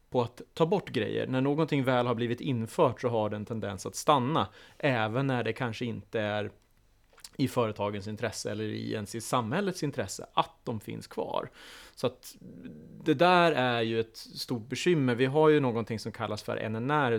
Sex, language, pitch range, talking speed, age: male, Swedish, 110-130 Hz, 185 wpm, 30-49